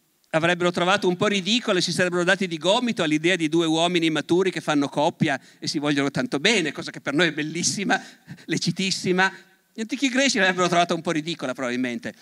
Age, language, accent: 50-69, Italian, native